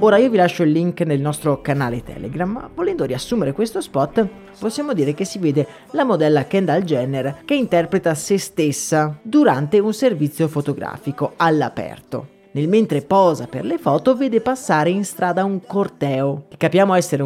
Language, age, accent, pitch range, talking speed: Italian, 30-49, native, 145-200 Hz, 165 wpm